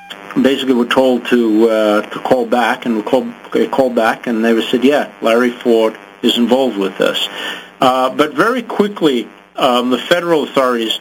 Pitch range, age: 110-140 Hz, 50-69